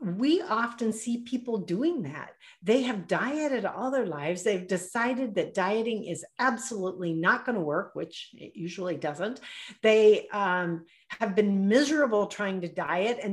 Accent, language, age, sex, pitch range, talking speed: American, English, 50-69, female, 185-245 Hz, 160 wpm